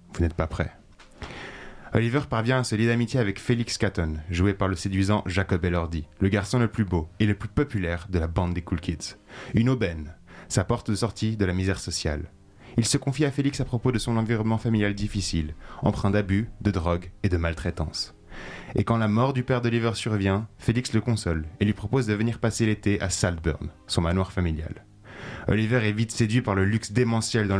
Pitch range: 90-115 Hz